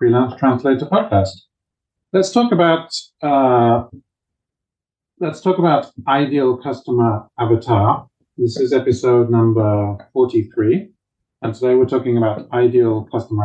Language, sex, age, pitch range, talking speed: English, male, 40-59, 115-140 Hz, 110 wpm